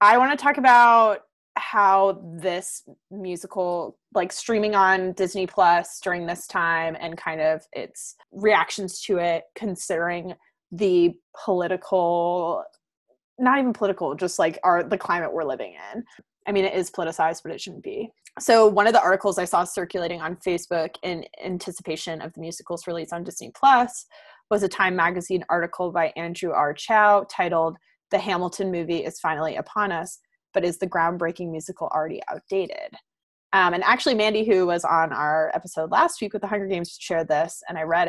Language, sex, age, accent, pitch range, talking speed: English, female, 20-39, American, 170-200 Hz, 170 wpm